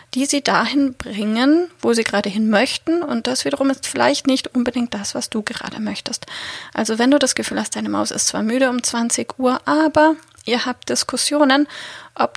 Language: German